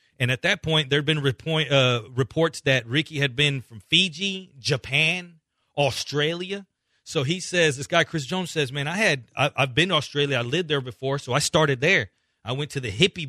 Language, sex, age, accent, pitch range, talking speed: English, male, 30-49, American, 135-180 Hz, 210 wpm